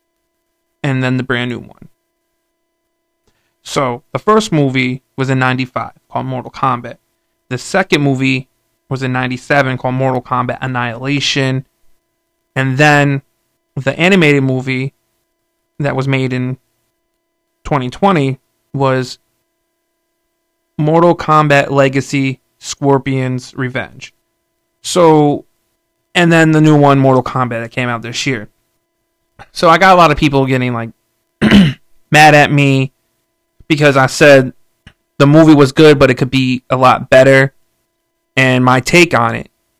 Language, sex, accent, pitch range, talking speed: English, male, American, 125-165 Hz, 130 wpm